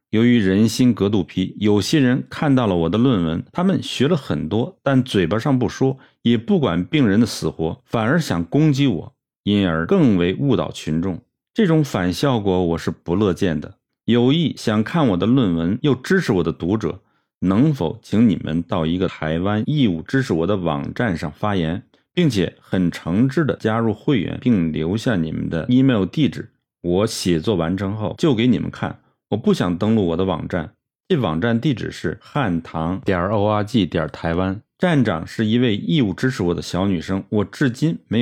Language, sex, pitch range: Chinese, male, 90-120 Hz